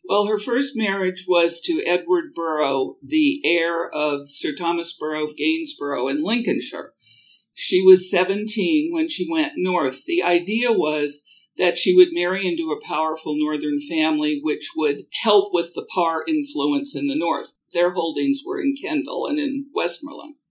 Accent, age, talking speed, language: American, 60-79, 160 wpm, English